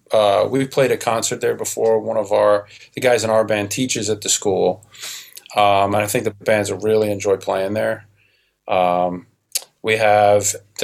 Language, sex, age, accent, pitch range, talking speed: English, male, 30-49, American, 100-115 Hz, 175 wpm